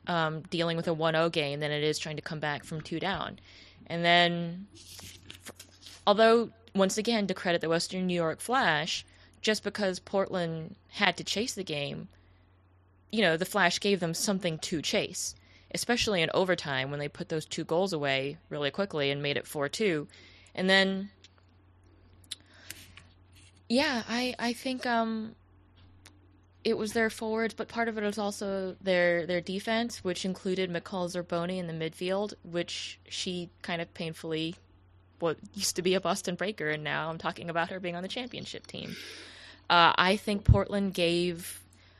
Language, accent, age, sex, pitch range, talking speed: English, American, 20-39, female, 145-195 Hz, 165 wpm